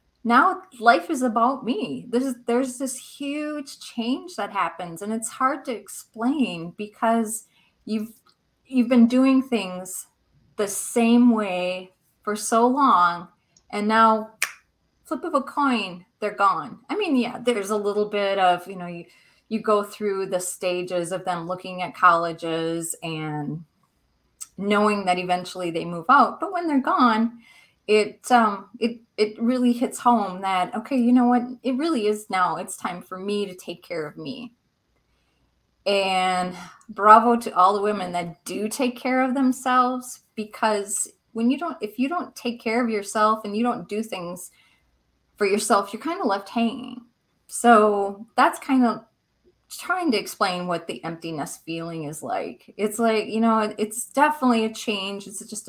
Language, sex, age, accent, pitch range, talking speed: English, female, 30-49, American, 185-245 Hz, 165 wpm